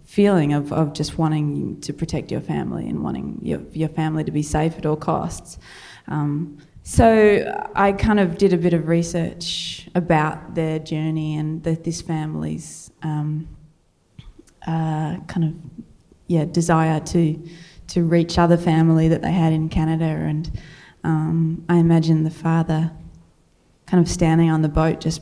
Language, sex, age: English, female, 20-39